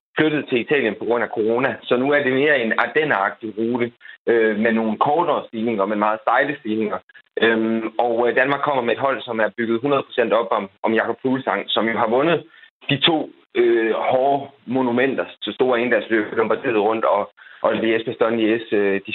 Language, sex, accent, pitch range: Danish, male, native, 110-140 Hz